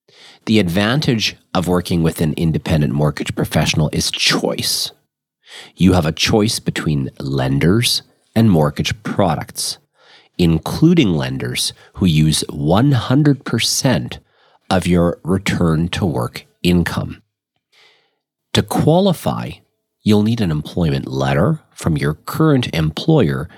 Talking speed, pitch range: 100 wpm, 75-120 Hz